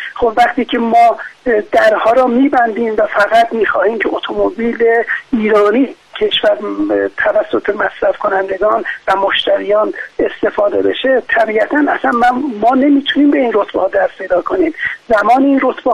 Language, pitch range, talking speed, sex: Persian, 220-270 Hz, 130 wpm, male